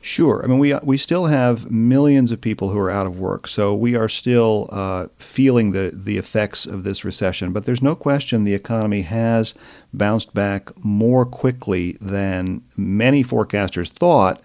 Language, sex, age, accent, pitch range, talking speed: English, male, 50-69, American, 100-125 Hz, 175 wpm